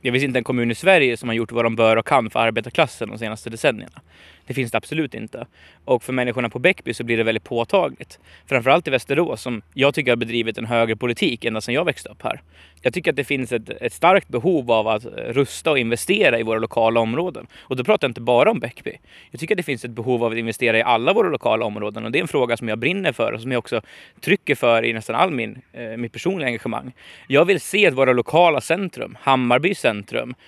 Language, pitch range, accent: Swedish, 115-150 Hz, native